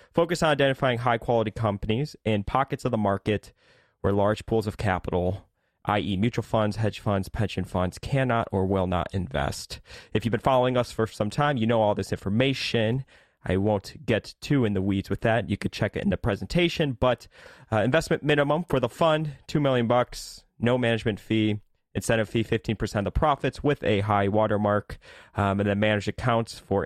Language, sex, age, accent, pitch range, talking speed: English, male, 30-49, American, 100-120 Hz, 190 wpm